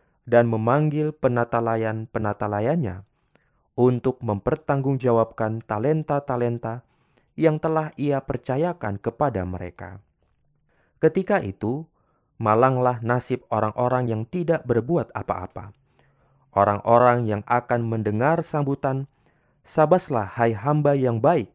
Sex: male